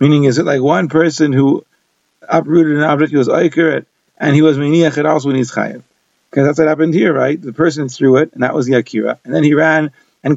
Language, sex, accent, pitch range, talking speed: English, male, American, 145-165 Hz, 220 wpm